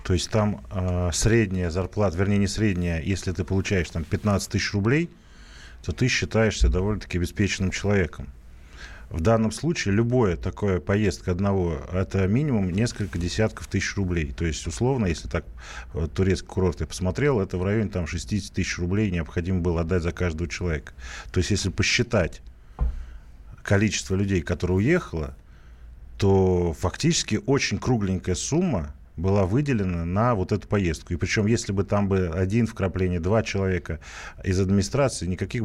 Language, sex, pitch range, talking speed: Russian, male, 85-105 Hz, 150 wpm